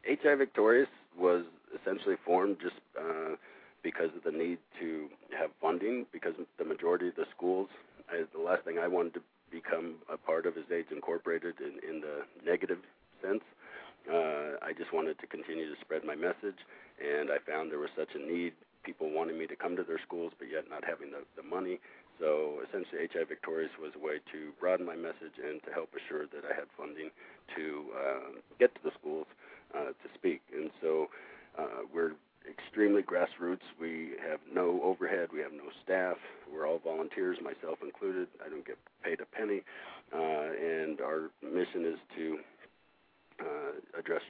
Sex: male